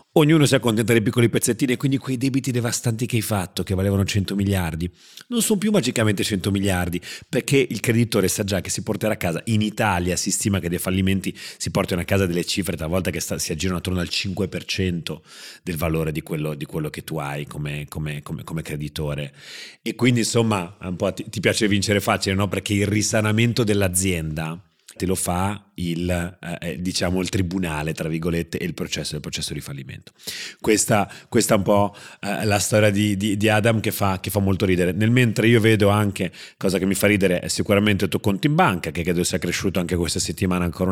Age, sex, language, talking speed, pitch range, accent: 30-49, male, Italian, 210 wpm, 90-120 Hz, native